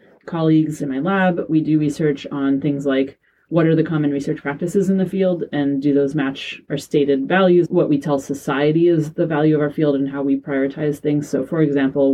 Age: 30-49